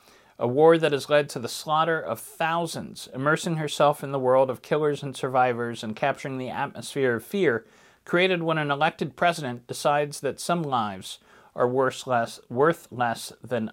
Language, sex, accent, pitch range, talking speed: English, male, American, 125-160 Hz, 175 wpm